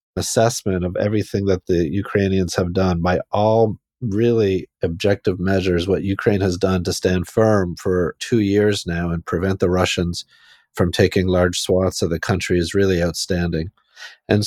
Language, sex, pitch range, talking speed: English, male, 95-115 Hz, 160 wpm